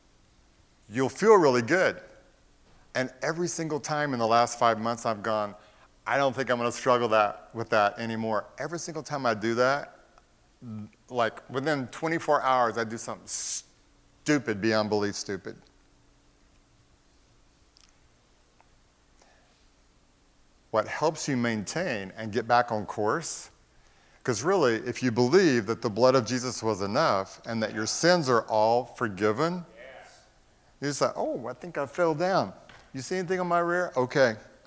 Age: 50-69